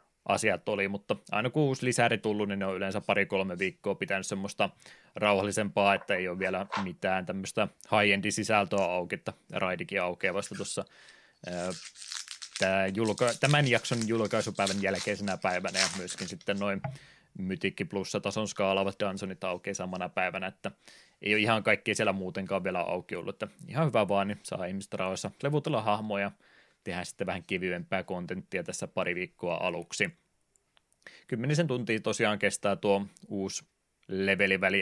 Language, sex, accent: Finnish, male, native